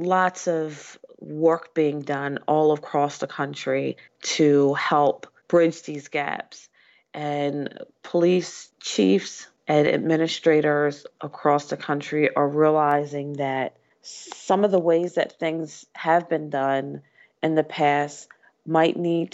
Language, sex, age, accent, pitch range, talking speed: English, female, 30-49, American, 140-160 Hz, 120 wpm